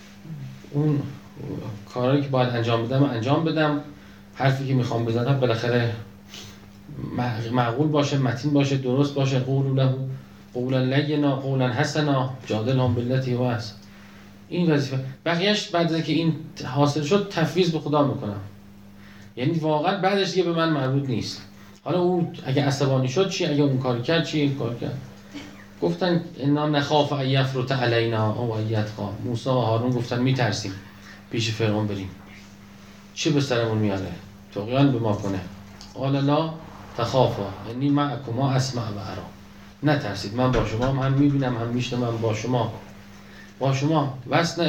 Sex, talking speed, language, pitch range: male, 145 wpm, Persian, 100-145 Hz